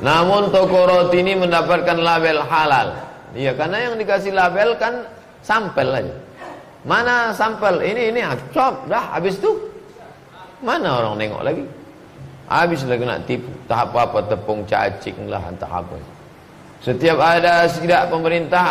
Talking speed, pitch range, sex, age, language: 140 wpm, 125-165 Hz, male, 30-49, Indonesian